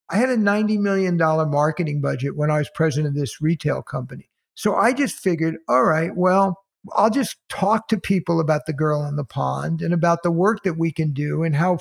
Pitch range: 150-190 Hz